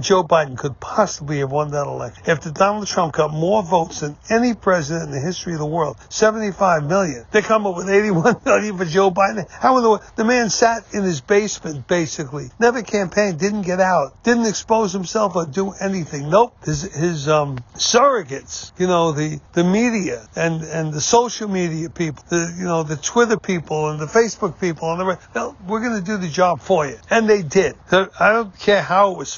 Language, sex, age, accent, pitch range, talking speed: English, male, 60-79, American, 155-195 Hz, 210 wpm